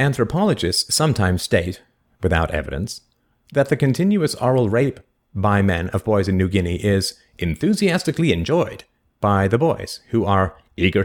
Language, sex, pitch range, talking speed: English, male, 95-125 Hz, 140 wpm